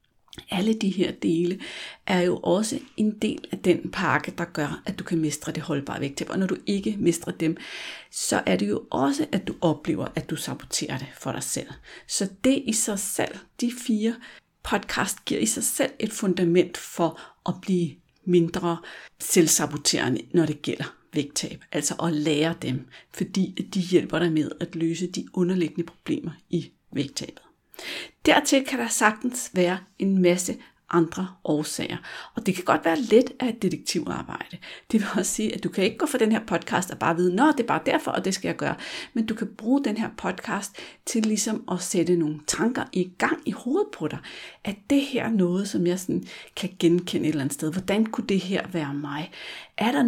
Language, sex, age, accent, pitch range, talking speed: Danish, female, 60-79, native, 165-215 Hz, 200 wpm